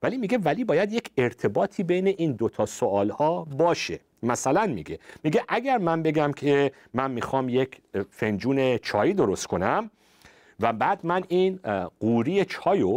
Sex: male